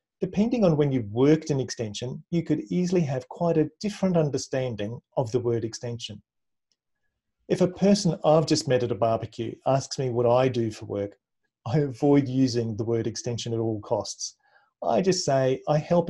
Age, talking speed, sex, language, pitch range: 40-59, 185 wpm, male, English, 120-150 Hz